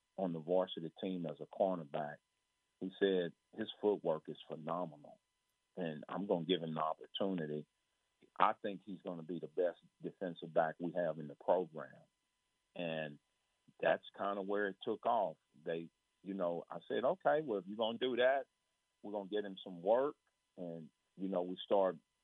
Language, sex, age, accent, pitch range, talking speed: English, male, 40-59, American, 85-100 Hz, 185 wpm